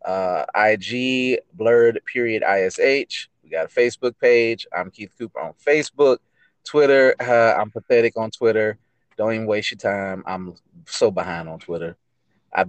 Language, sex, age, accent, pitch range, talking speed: English, male, 30-49, American, 105-130 Hz, 150 wpm